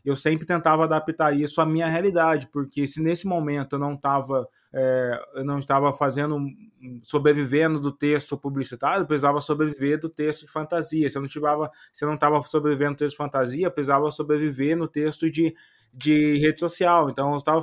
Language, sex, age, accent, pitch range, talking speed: Portuguese, male, 20-39, Brazilian, 140-160 Hz, 165 wpm